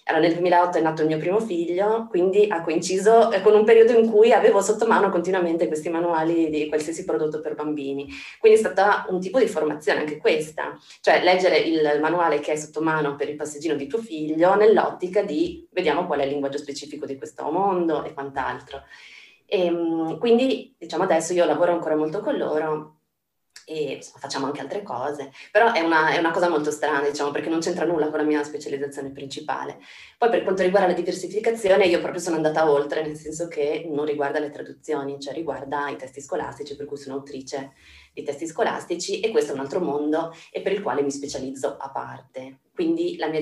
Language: Italian